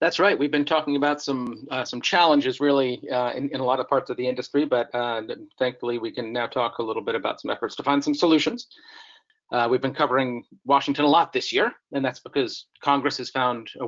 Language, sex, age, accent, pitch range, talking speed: English, male, 40-59, American, 125-155 Hz, 235 wpm